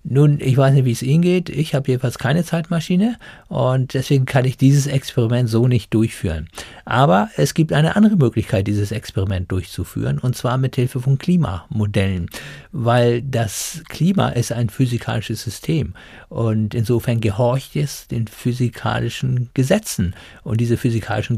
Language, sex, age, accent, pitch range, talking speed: German, male, 50-69, German, 115-140 Hz, 150 wpm